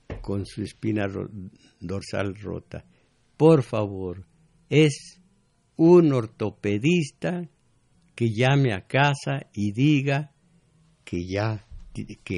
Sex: male